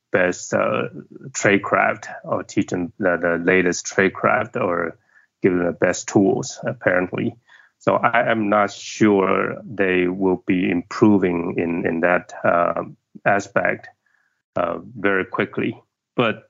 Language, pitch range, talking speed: English, 90-105 Hz, 130 wpm